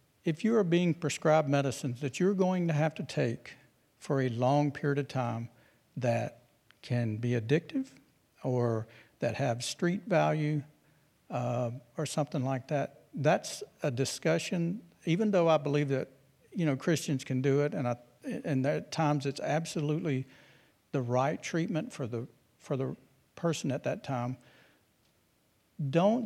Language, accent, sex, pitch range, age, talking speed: English, American, male, 125-155 Hz, 60-79, 150 wpm